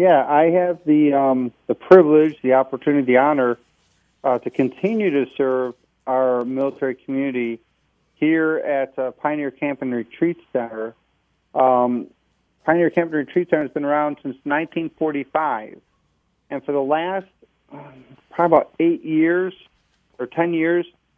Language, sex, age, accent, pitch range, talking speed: English, male, 40-59, American, 135-160 Hz, 140 wpm